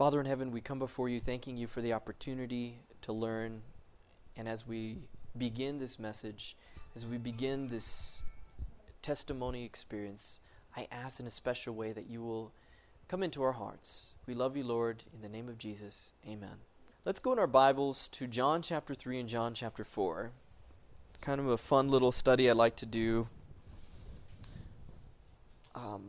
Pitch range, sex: 110-135 Hz, male